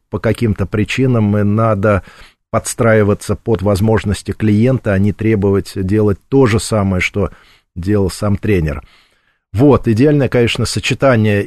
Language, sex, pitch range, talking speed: Russian, male, 100-120 Hz, 125 wpm